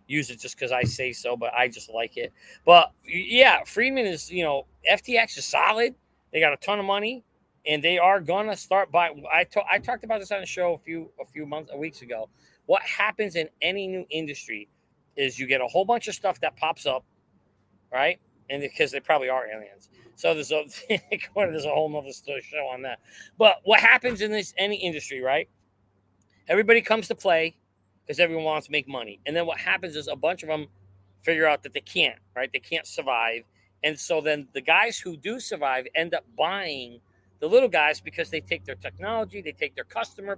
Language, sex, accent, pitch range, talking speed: English, male, American, 135-215 Hz, 210 wpm